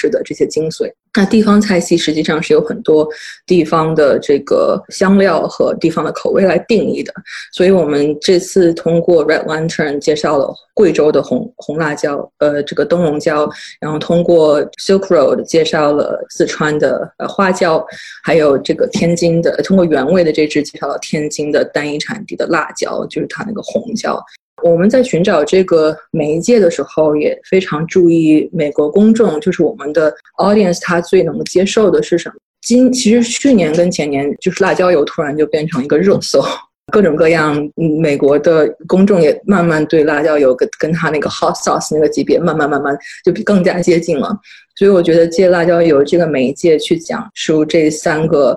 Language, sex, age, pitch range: Chinese, female, 20-39, 155-190 Hz